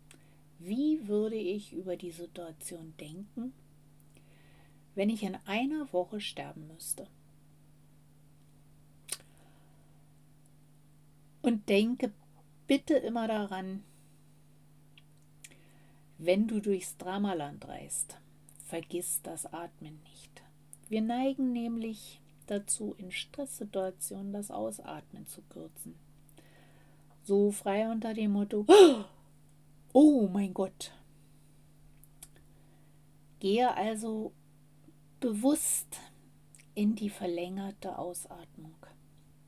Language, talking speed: German, 80 wpm